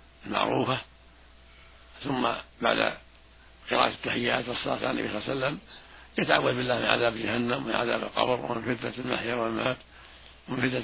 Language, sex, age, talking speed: Arabic, male, 60-79, 115 wpm